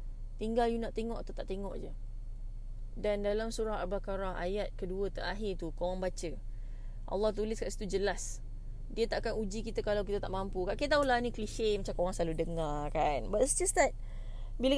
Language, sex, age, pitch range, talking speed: English, female, 20-39, 185-250 Hz, 185 wpm